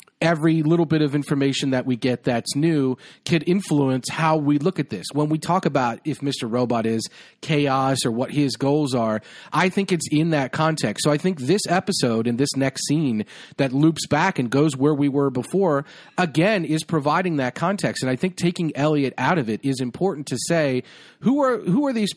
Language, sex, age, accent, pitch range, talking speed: English, male, 40-59, American, 130-170 Hz, 210 wpm